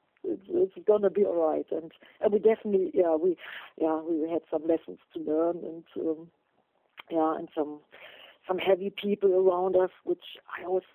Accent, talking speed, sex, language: German, 180 wpm, female, English